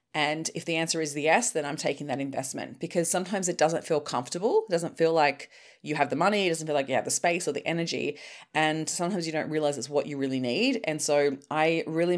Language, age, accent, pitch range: English, 30-49, Australian, 150-175 Hz